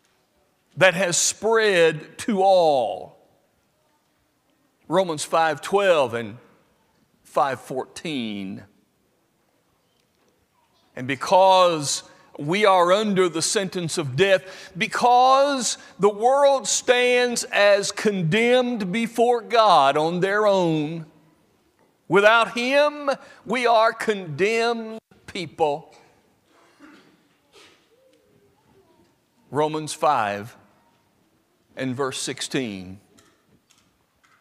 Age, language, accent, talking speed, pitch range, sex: 60-79, English, American, 70 wpm, 165-240 Hz, male